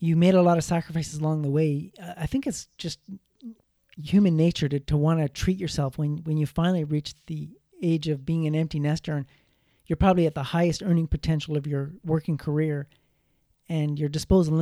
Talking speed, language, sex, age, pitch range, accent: 195 wpm, English, male, 40-59, 150-175 Hz, American